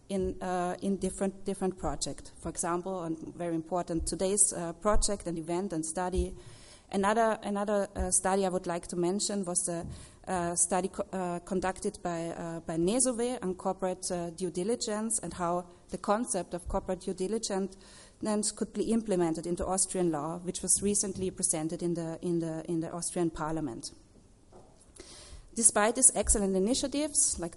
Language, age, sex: English, 30-49, female